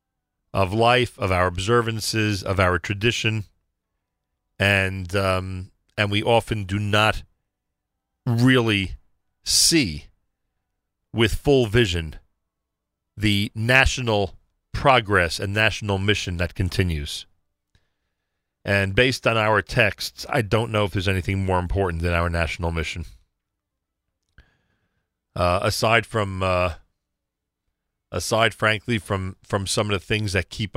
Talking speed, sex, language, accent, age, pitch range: 115 wpm, male, English, American, 40-59, 90-110 Hz